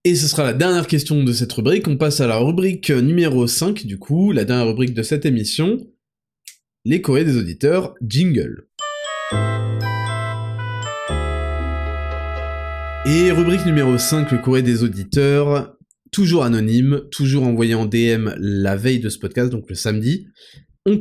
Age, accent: 20-39, French